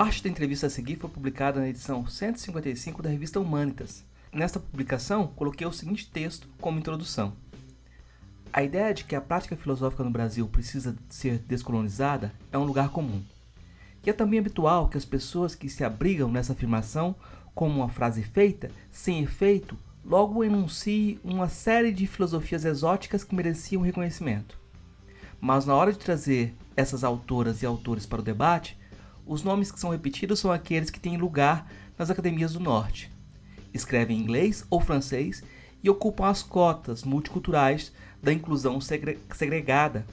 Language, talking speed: Portuguese, 155 wpm